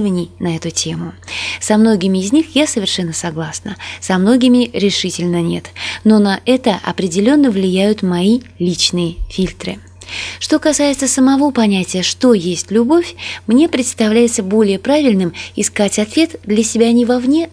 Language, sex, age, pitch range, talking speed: Russian, female, 20-39, 175-240 Hz, 135 wpm